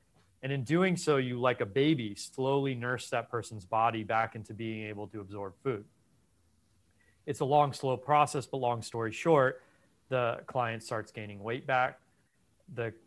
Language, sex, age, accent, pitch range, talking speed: English, male, 30-49, American, 110-145 Hz, 165 wpm